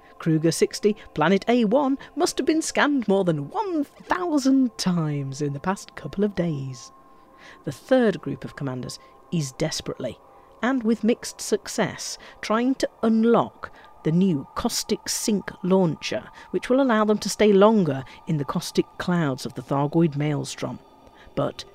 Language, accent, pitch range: English, British, 155-240 Hz